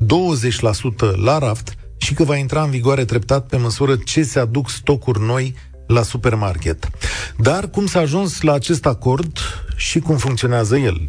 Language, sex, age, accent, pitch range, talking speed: Romanian, male, 40-59, native, 110-145 Hz, 155 wpm